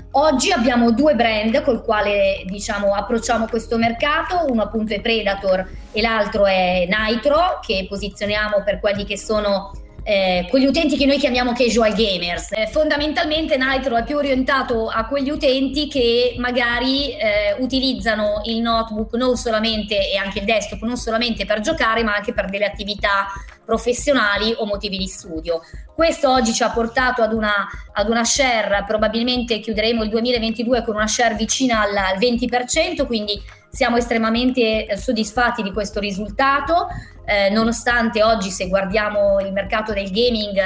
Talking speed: 150 wpm